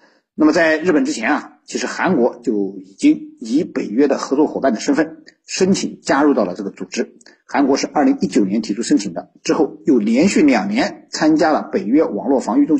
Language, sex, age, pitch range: Chinese, male, 50-69, 200-300 Hz